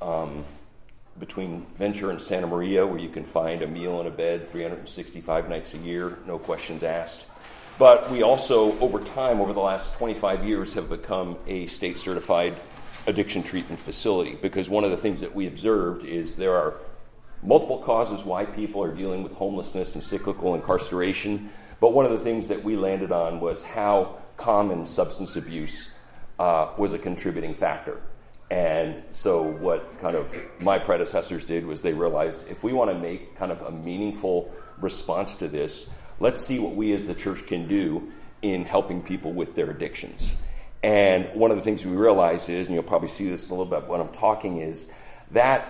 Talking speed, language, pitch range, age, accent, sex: 185 wpm, English, 85-100 Hz, 40-59, American, male